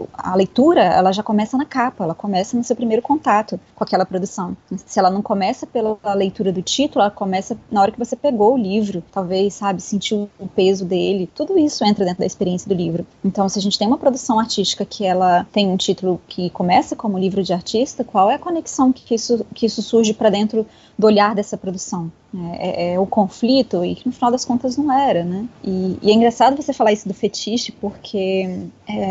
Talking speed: 220 wpm